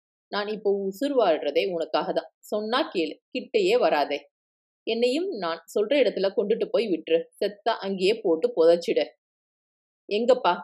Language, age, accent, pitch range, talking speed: Tamil, 30-49, native, 175-265 Hz, 125 wpm